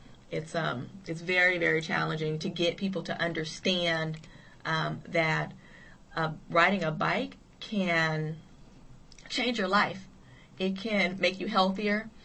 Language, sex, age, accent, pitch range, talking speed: English, female, 30-49, American, 160-185 Hz, 125 wpm